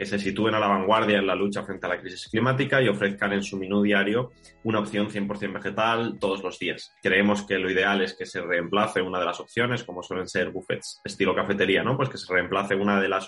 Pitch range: 95-110 Hz